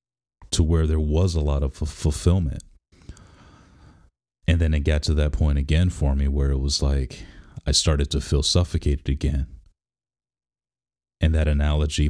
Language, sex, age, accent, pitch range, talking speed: English, male, 30-49, American, 75-90 Hz, 155 wpm